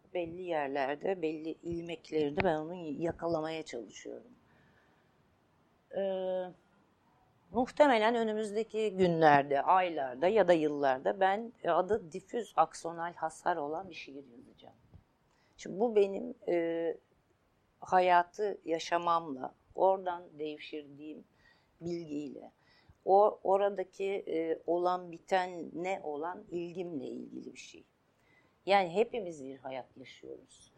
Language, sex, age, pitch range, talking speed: Turkish, female, 50-69, 150-180 Hz, 95 wpm